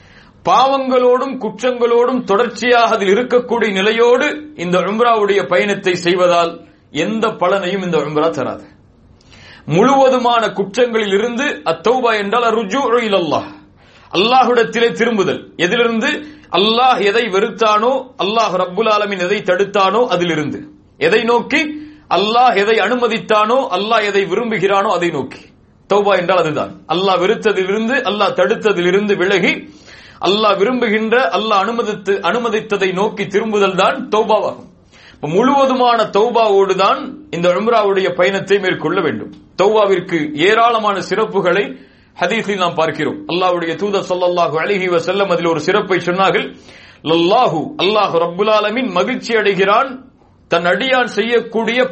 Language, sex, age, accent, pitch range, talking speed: English, male, 30-49, Indian, 185-235 Hz, 85 wpm